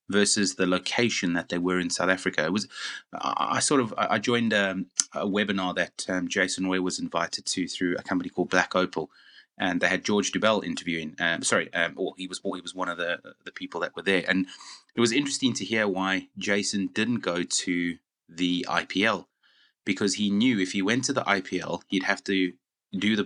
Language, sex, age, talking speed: English, male, 30-49, 210 wpm